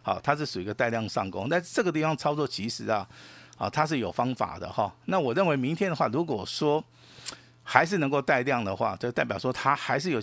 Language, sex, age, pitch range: Chinese, male, 50-69, 110-145 Hz